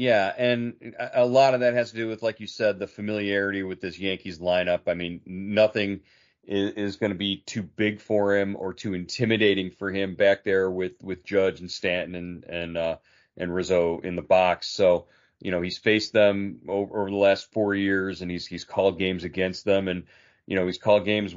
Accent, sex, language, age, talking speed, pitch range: American, male, English, 40-59, 210 wpm, 90-105 Hz